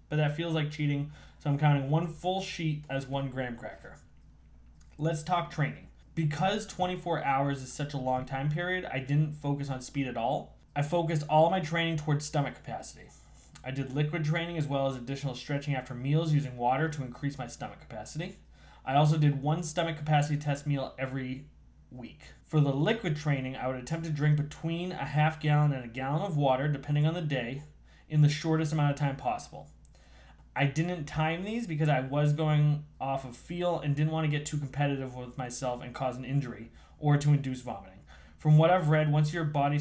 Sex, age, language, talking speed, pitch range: male, 20-39, English, 200 wpm, 130-155 Hz